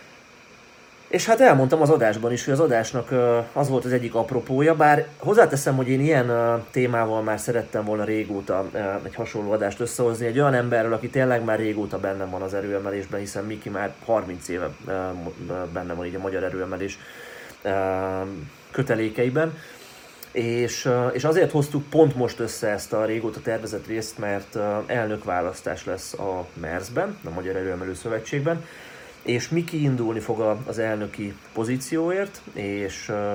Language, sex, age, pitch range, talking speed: Hungarian, male, 30-49, 100-125 Hz, 140 wpm